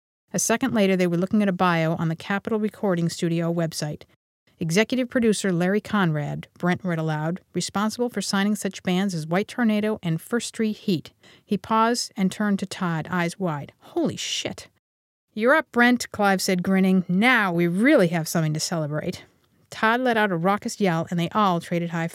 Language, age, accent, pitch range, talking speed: English, 50-69, American, 165-210 Hz, 185 wpm